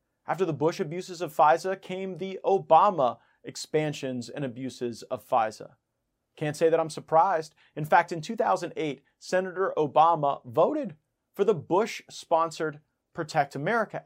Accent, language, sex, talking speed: American, English, male, 130 wpm